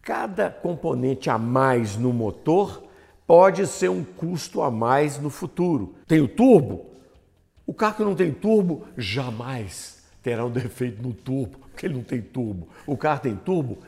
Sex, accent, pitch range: male, Brazilian, 110-150 Hz